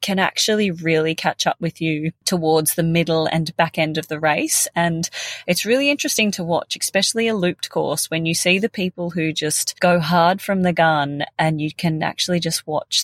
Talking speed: 205 wpm